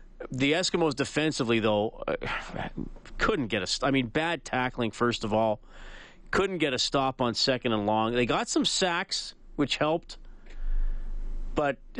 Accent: American